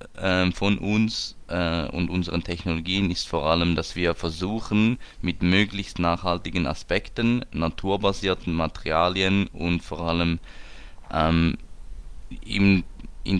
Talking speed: 95 wpm